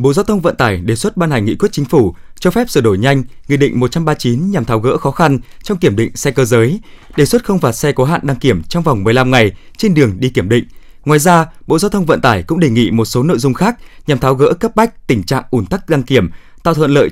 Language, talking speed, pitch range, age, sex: Vietnamese, 275 wpm, 120-175 Hz, 20-39, male